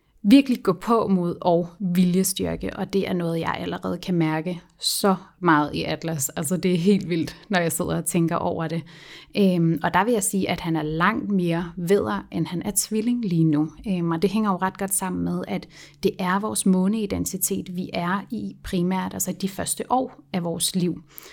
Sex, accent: female, native